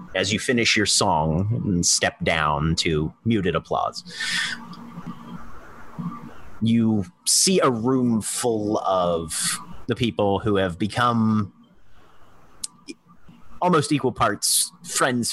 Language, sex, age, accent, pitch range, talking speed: English, male, 30-49, American, 80-110 Hz, 100 wpm